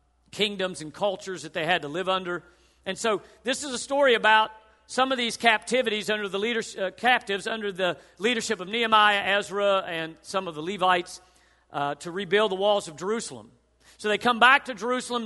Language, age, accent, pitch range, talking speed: English, 50-69, American, 170-210 Hz, 195 wpm